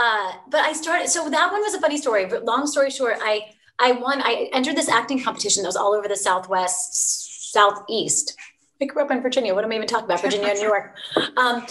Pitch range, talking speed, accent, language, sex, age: 205-270 Hz, 230 wpm, American, English, female, 30-49